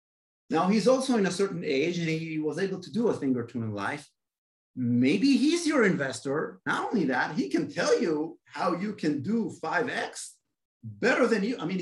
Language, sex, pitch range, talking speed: English, male, 135-215 Hz, 205 wpm